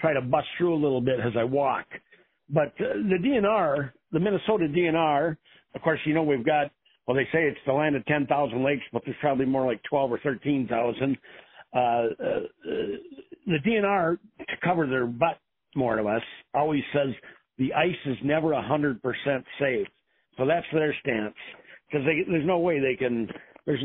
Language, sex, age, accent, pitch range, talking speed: English, male, 50-69, American, 130-170 Hz, 185 wpm